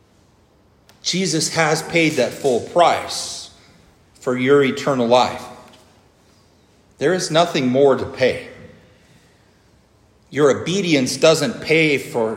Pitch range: 115-155 Hz